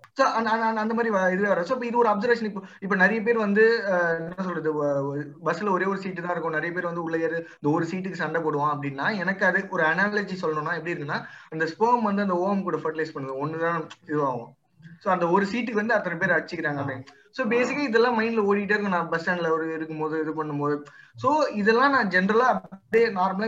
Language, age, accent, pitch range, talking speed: Tamil, 20-39, native, 155-210 Hz, 190 wpm